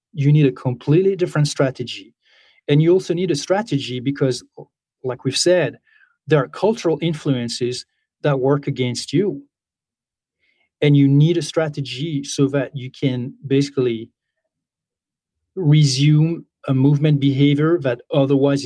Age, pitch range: 30-49, 125-150 Hz